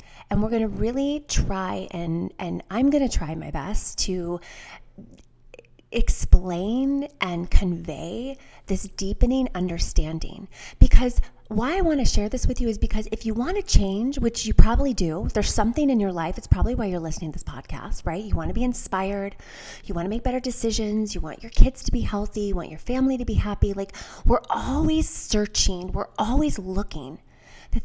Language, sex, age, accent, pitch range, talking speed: English, female, 30-49, American, 175-245 Hz, 190 wpm